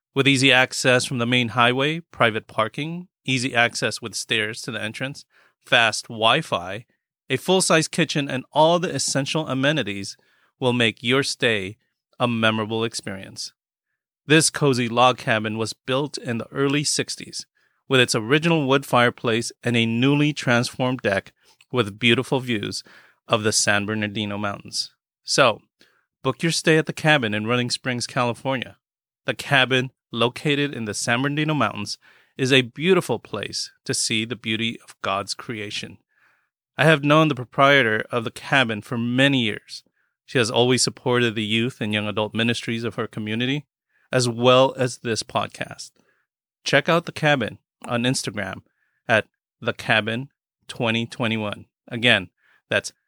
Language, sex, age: English, male, 30-49